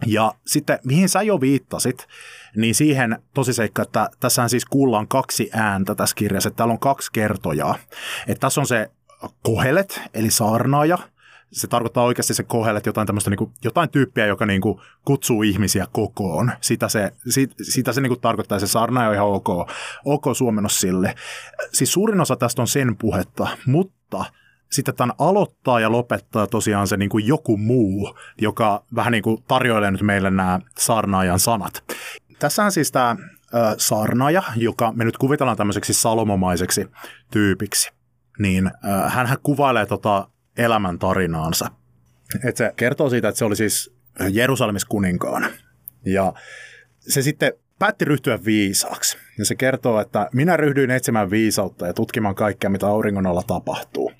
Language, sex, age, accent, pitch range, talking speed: Finnish, male, 30-49, native, 100-130 Hz, 145 wpm